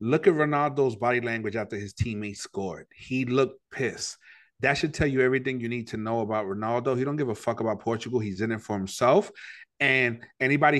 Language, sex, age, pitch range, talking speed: English, male, 30-49, 110-135 Hz, 205 wpm